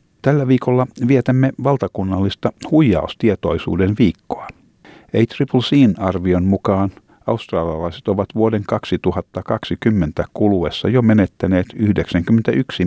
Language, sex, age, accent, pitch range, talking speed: Finnish, male, 50-69, native, 85-110 Hz, 75 wpm